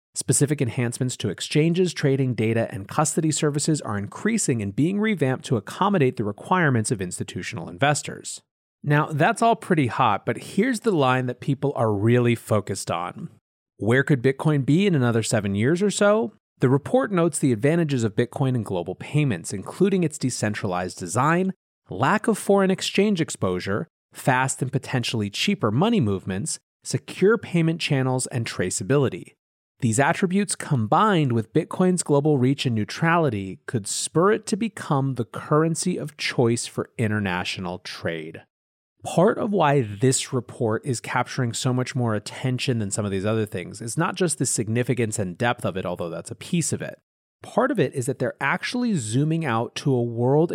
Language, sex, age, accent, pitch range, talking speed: English, male, 30-49, American, 115-160 Hz, 165 wpm